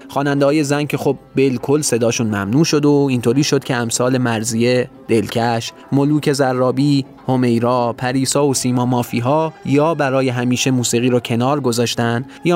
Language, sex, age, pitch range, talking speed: Persian, male, 20-39, 120-145 Hz, 145 wpm